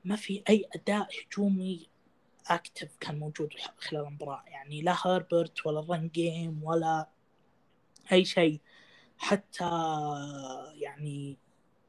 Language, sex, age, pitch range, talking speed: Arabic, female, 20-39, 155-185 Hz, 105 wpm